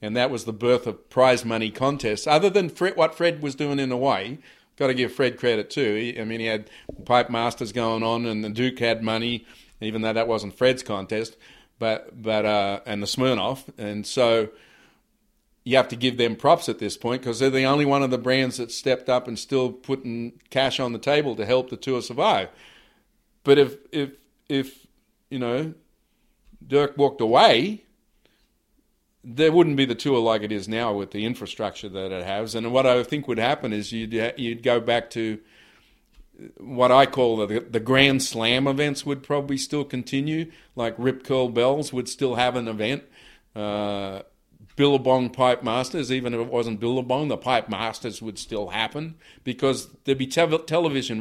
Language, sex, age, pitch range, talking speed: English, male, 50-69, 115-135 Hz, 190 wpm